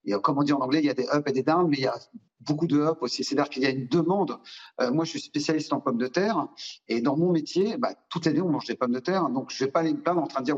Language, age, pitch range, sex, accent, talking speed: French, 40-59, 135-175 Hz, male, French, 350 wpm